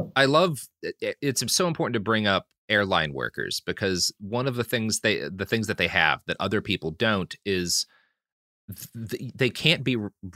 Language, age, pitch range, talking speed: English, 30-49, 105-150 Hz, 180 wpm